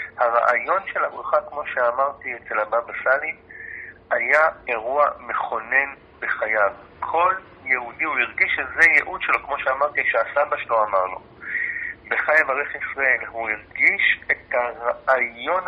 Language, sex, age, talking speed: Hebrew, male, 50-69, 125 wpm